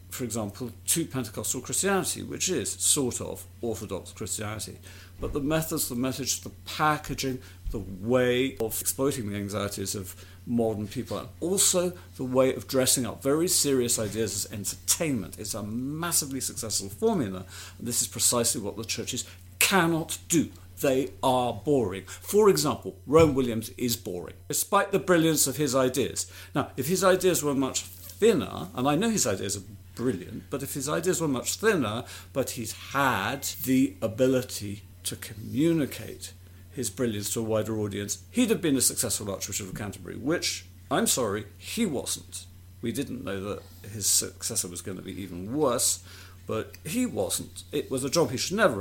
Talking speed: 170 wpm